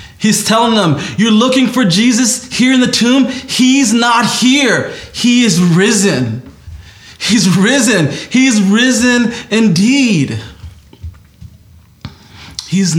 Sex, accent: male, American